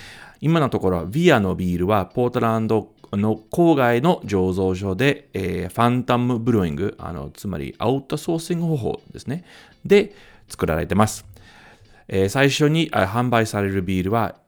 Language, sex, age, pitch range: Japanese, male, 40-59, 90-140 Hz